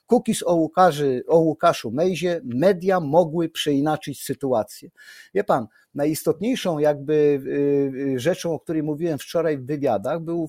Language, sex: Polish, male